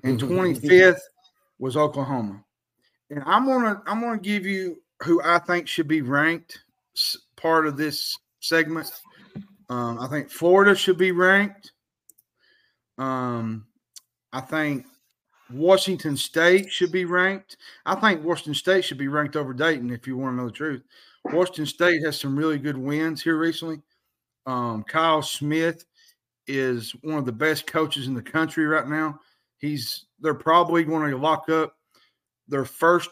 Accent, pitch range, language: American, 130-175 Hz, English